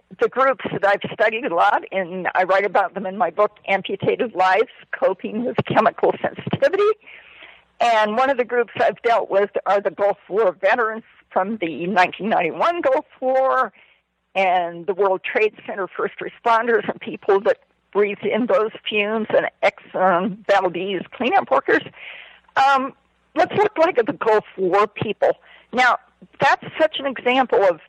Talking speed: 155 wpm